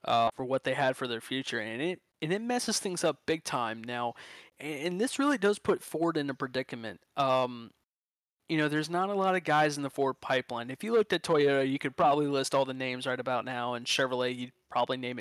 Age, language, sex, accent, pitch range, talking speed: 20-39, English, male, American, 130-155 Hz, 235 wpm